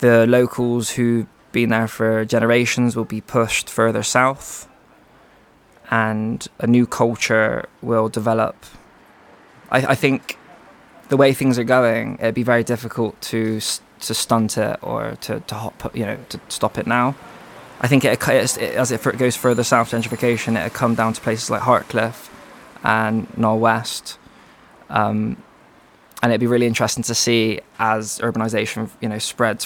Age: 20-39